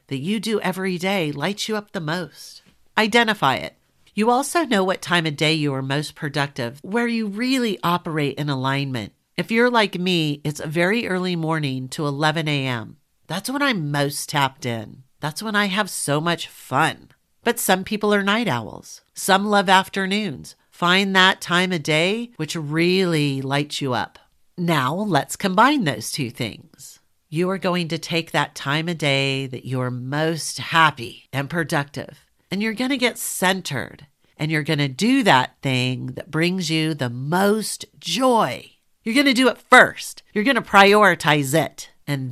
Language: English